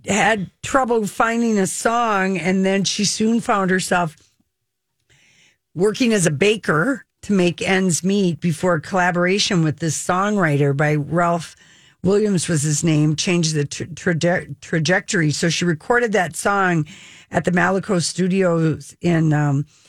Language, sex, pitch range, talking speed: English, female, 150-195 Hz, 135 wpm